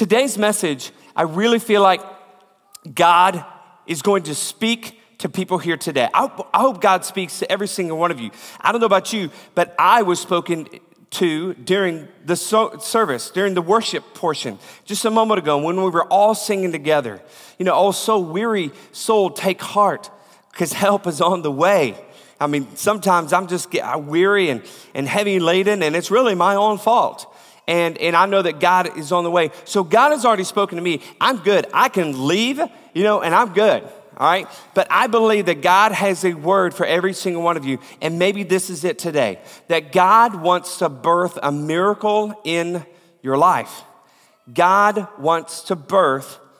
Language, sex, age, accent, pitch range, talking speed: English, male, 40-59, American, 165-200 Hz, 190 wpm